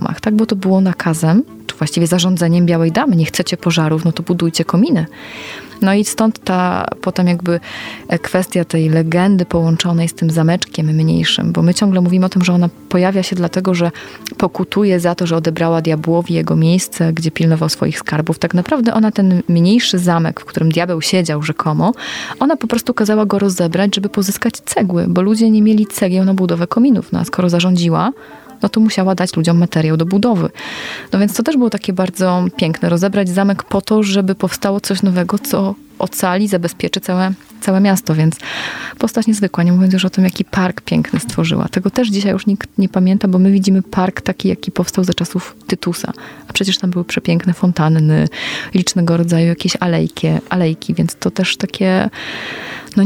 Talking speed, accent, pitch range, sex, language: 185 wpm, native, 170-200 Hz, female, Polish